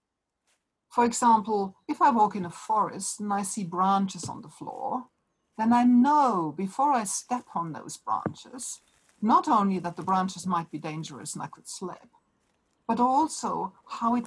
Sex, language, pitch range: female, English, 180-230 Hz